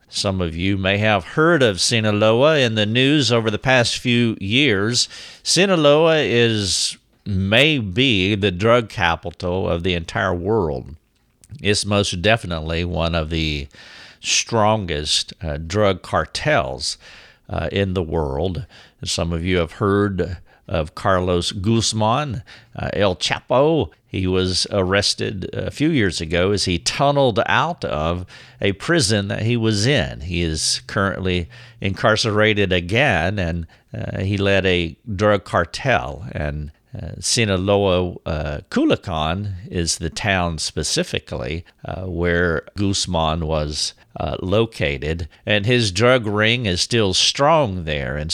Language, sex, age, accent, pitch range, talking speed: English, male, 50-69, American, 85-115 Hz, 130 wpm